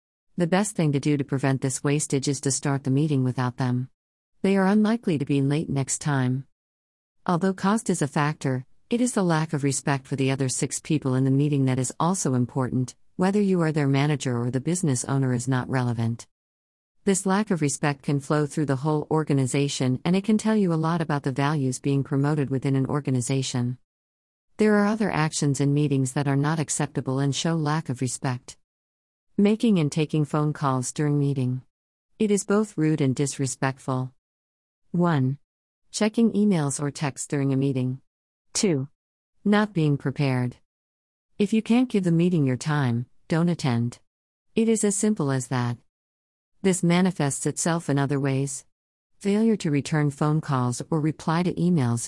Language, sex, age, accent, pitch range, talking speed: English, female, 50-69, American, 130-165 Hz, 180 wpm